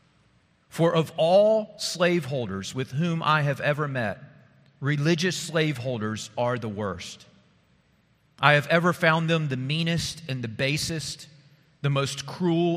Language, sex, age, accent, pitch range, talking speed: English, male, 40-59, American, 130-165 Hz, 130 wpm